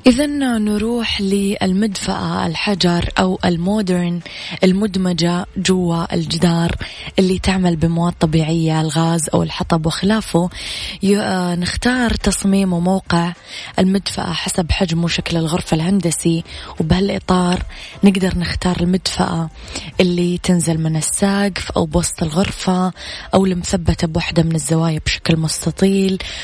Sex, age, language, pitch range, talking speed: female, 20-39, Arabic, 170-190 Hz, 100 wpm